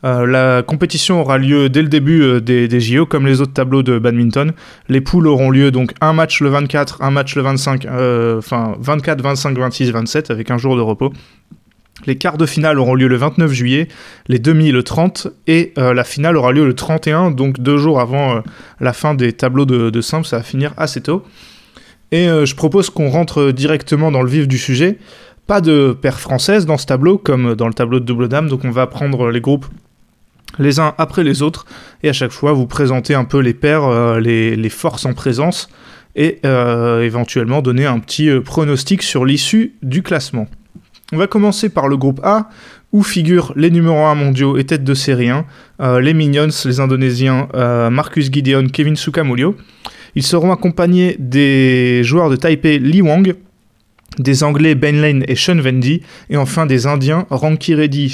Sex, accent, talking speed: male, French, 200 wpm